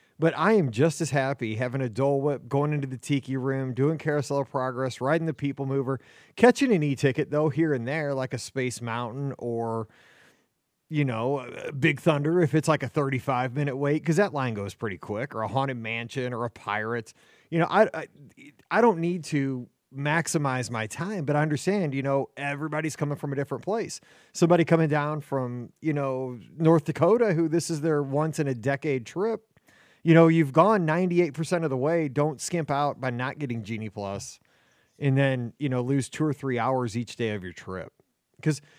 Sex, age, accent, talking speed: male, 30-49, American, 195 wpm